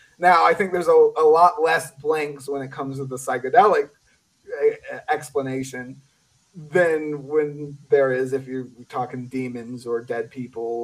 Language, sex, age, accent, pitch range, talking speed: English, male, 30-49, American, 130-170 Hz, 150 wpm